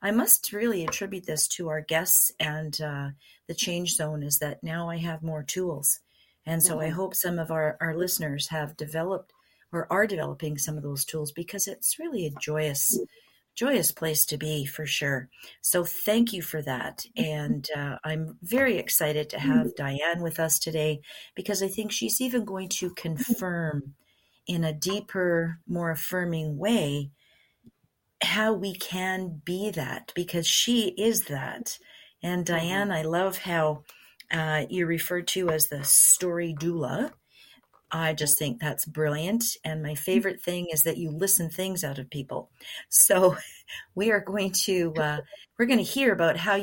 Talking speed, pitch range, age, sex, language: 165 wpm, 155-195 Hz, 40-59, female, English